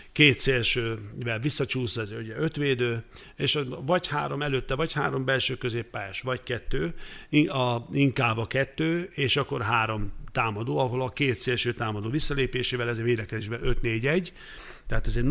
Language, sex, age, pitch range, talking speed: Hungarian, male, 60-79, 115-135 Hz, 130 wpm